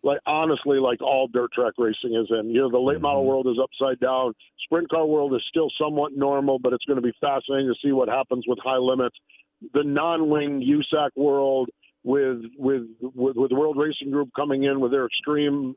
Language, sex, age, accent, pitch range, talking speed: English, male, 50-69, American, 130-150 Hz, 205 wpm